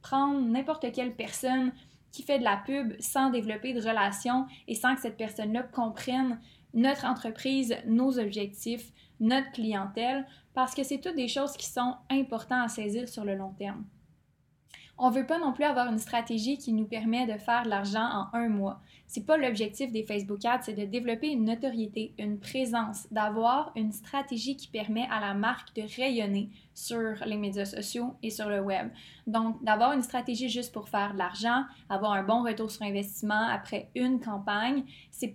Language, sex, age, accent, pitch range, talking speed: French, female, 20-39, Canadian, 210-250 Hz, 185 wpm